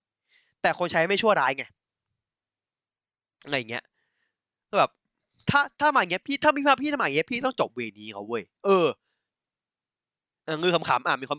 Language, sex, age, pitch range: Thai, male, 20-39, 125-190 Hz